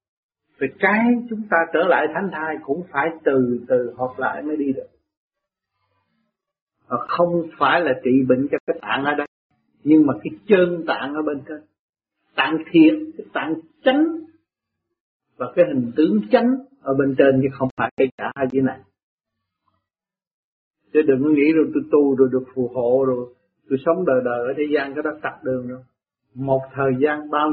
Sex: male